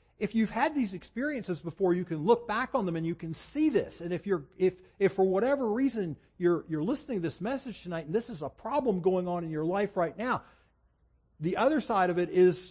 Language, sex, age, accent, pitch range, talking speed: English, male, 50-69, American, 135-195 Hz, 235 wpm